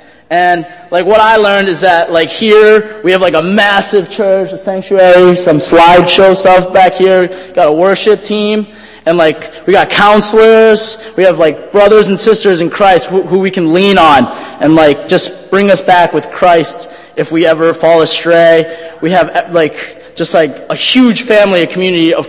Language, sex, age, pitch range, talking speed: English, male, 20-39, 160-195 Hz, 185 wpm